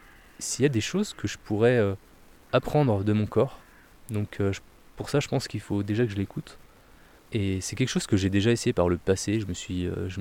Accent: French